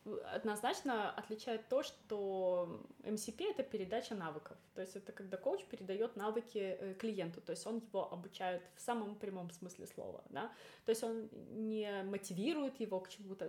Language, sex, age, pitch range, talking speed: Russian, female, 20-39, 195-235 Hz, 155 wpm